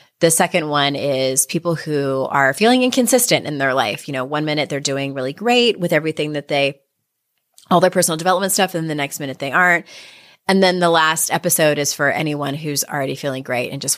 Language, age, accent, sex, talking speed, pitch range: English, 30-49, American, female, 210 wpm, 140-180 Hz